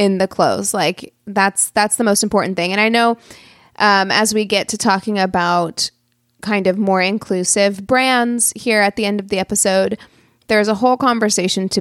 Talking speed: 190 wpm